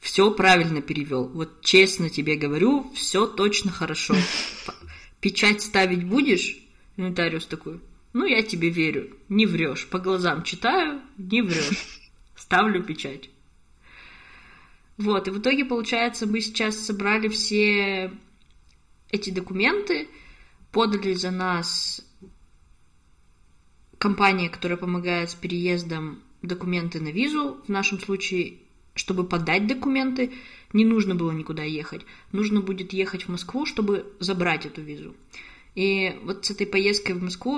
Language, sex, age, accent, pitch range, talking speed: Russian, female, 20-39, native, 175-210 Hz, 125 wpm